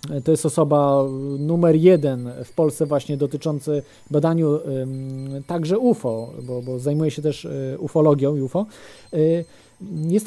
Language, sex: Polish, male